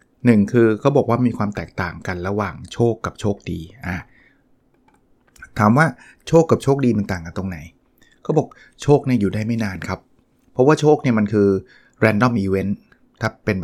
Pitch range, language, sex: 105-130 Hz, Thai, male